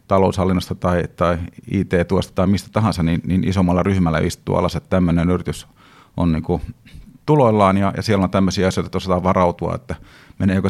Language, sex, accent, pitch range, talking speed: Finnish, male, native, 90-105 Hz, 175 wpm